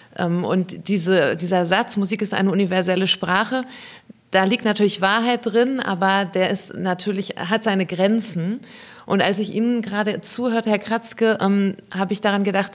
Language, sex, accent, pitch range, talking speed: German, female, German, 190-220 Hz, 160 wpm